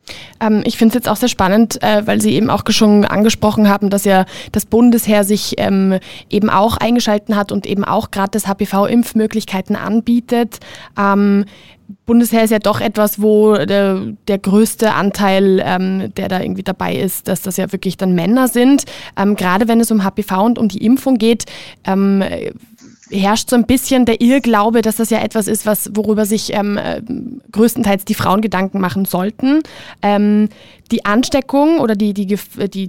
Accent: German